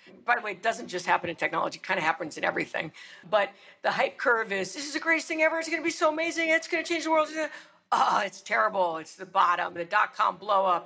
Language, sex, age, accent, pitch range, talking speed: English, female, 50-69, American, 175-215 Hz, 265 wpm